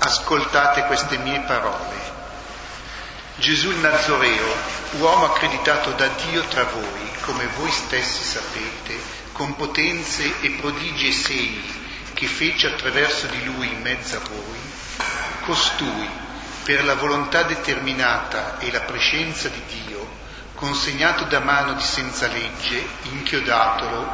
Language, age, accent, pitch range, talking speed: Italian, 40-59, native, 130-150 Hz, 120 wpm